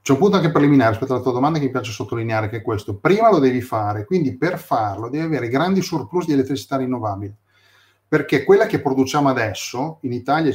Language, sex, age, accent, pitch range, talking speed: Italian, male, 30-49, native, 110-150 Hz, 210 wpm